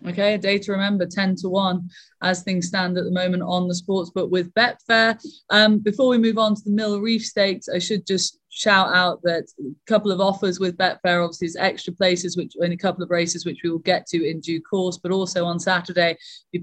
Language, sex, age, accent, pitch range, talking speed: English, female, 20-39, British, 170-200 Hz, 235 wpm